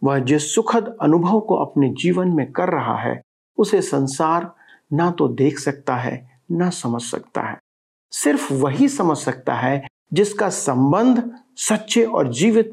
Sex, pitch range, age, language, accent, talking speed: male, 135-200 Hz, 50-69, Hindi, native, 150 wpm